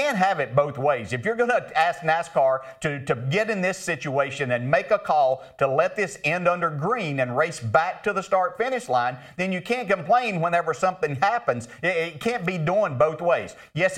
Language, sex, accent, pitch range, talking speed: English, male, American, 140-180 Hz, 210 wpm